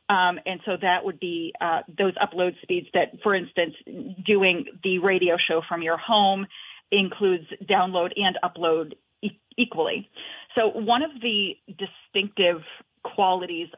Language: English